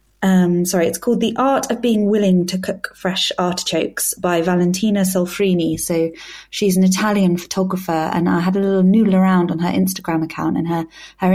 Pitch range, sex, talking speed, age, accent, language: 170-195 Hz, female, 185 wpm, 30-49, British, English